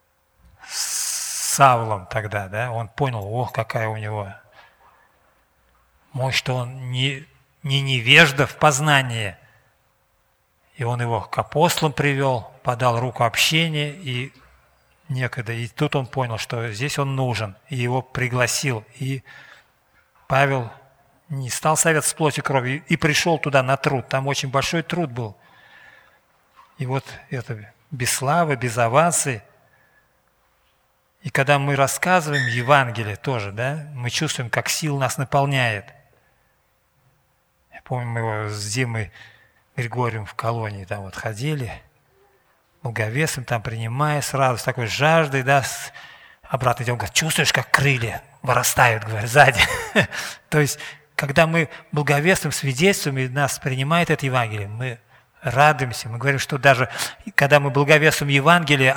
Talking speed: 130 wpm